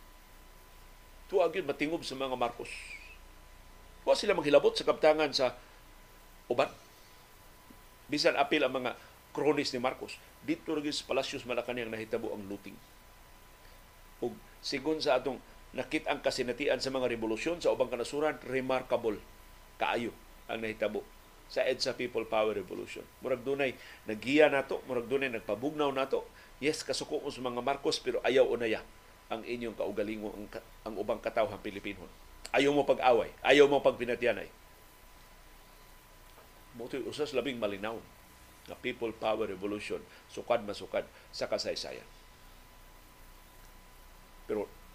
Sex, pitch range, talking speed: male, 100-140 Hz, 120 wpm